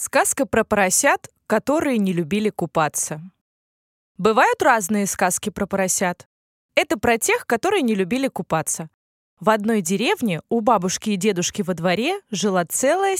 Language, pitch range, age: Russian, 190-265 Hz, 20-39